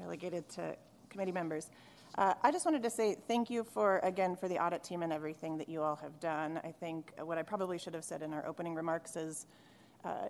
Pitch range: 160-185 Hz